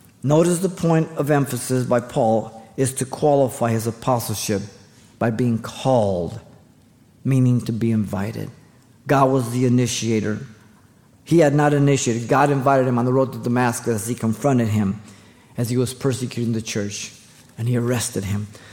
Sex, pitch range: male, 115-135 Hz